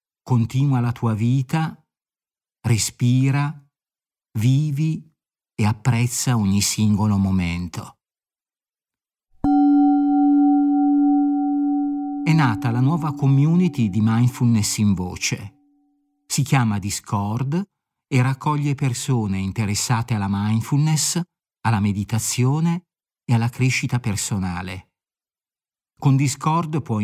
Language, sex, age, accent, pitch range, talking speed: Italian, male, 50-69, native, 110-145 Hz, 85 wpm